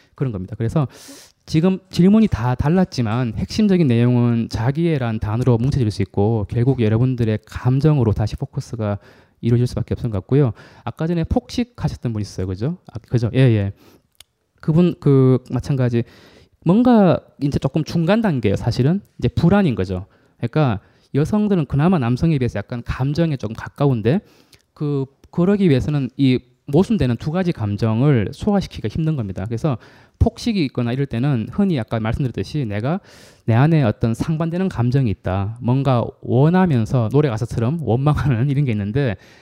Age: 20-39